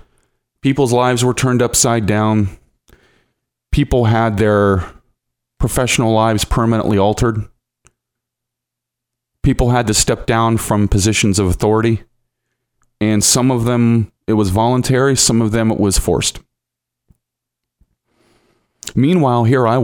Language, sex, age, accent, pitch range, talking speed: English, male, 40-59, American, 100-125 Hz, 115 wpm